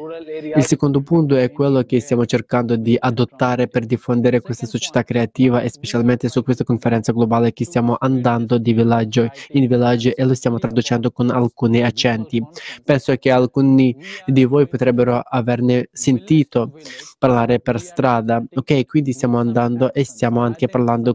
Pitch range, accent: 120-135 Hz, native